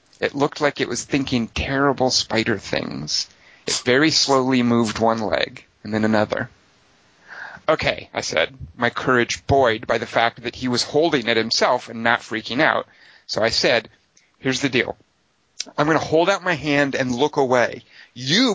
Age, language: 40-59, English